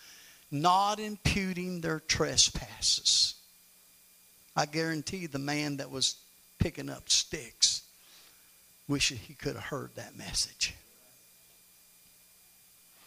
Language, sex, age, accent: English, male, 50-69, American